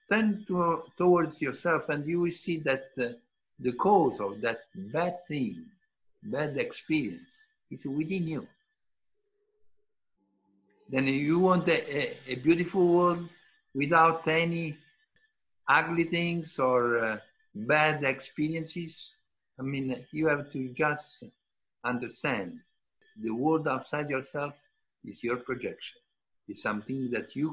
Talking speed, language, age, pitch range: 115 wpm, English, 50-69, 125-195 Hz